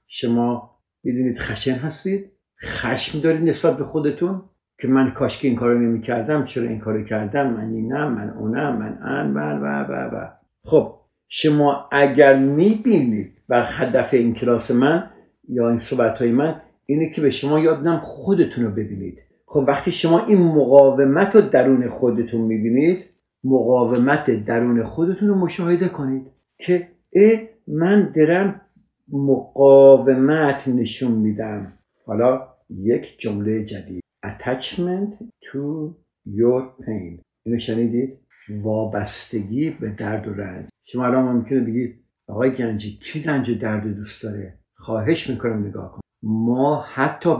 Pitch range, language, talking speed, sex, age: 115-145 Hz, Persian, 130 wpm, male, 50-69